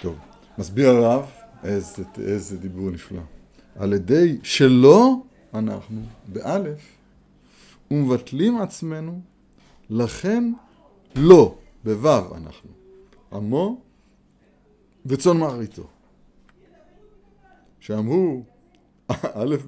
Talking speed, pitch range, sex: 70 wpm, 105-165 Hz, male